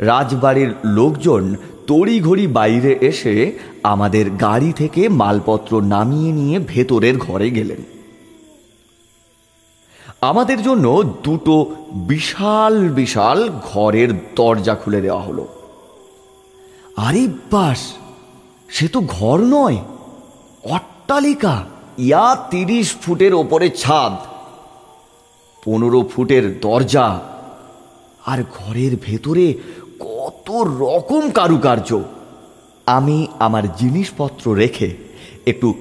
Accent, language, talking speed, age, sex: native, Bengali, 60 wpm, 30-49, male